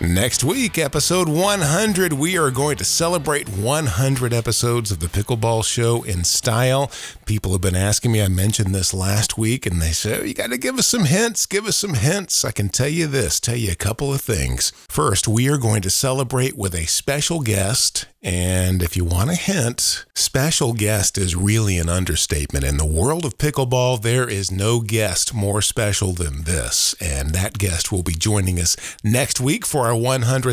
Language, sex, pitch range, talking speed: English, male, 95-135 Hz, 195 wpm